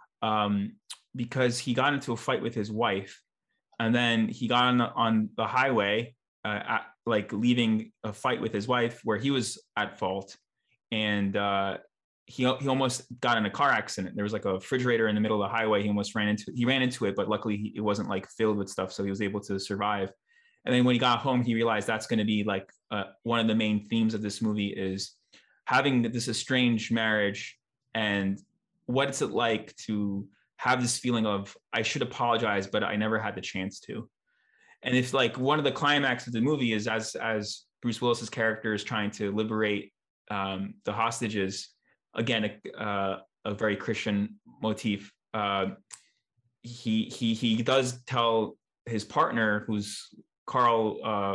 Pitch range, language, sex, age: 105-120 Hz, English, male, 20-39